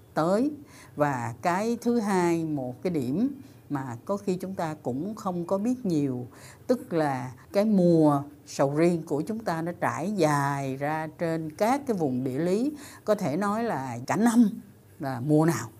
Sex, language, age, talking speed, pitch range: female, Vietnamese, 60-79, 175 wpm, 140-205 Hz